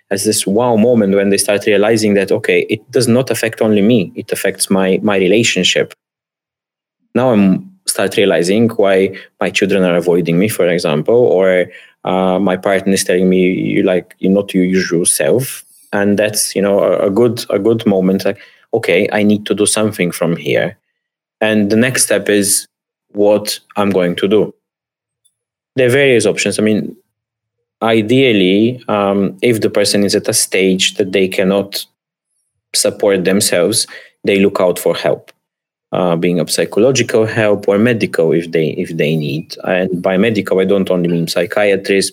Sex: male